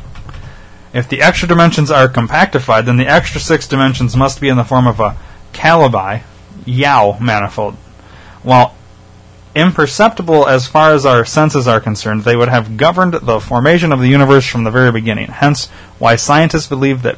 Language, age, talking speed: English, 30-49, 170 wpm